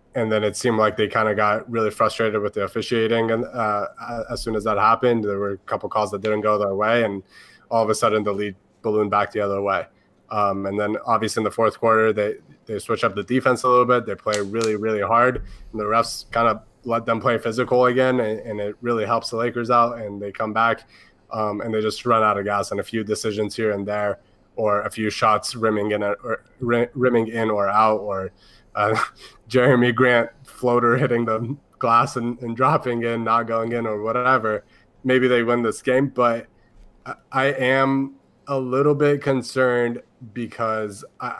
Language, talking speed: English, 210 wpm